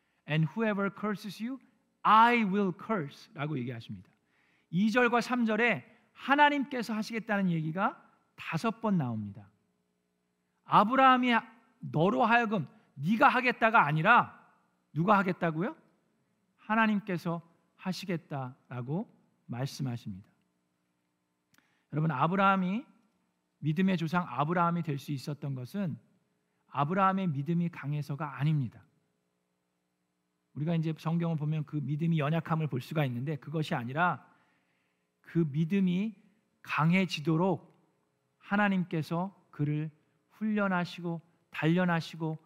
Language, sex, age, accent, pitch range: Korean, male, 40-59, native, 135-205 Hz